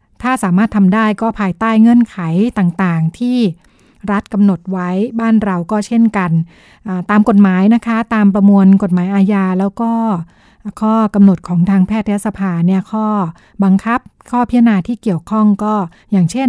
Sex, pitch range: female, 185-220 Hz